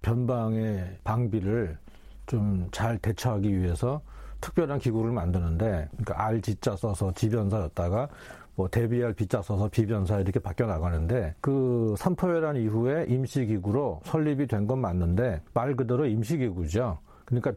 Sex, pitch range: male, 105-135 Hz